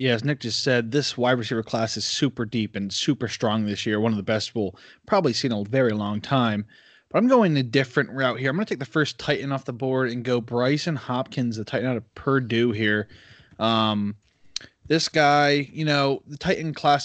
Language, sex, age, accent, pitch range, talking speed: English, male, 20-39, American, 115-145 Hz, 225 wpm